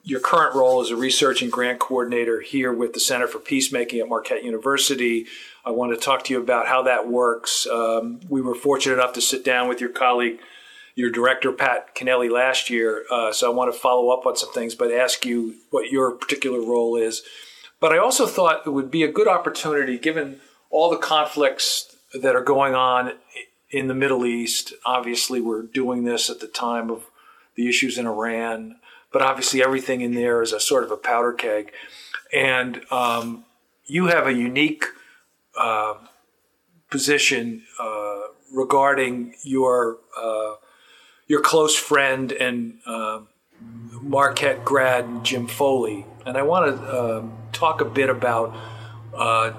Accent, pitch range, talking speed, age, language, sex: American, 115-135 Hz, 170 wpm, 50-69, English, male